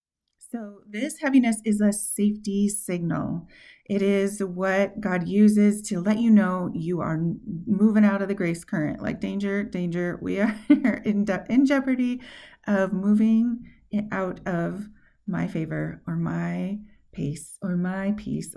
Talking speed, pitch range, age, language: 145 wpm, 195-230 Hz, 30-49, English